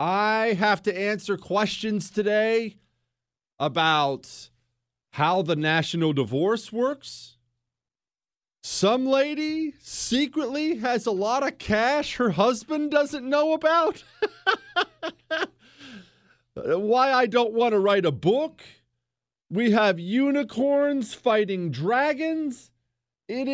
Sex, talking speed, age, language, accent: male, 100 wpm, 40-59, English, American